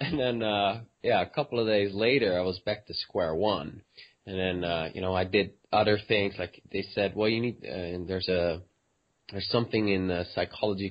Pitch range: 95-110 Hz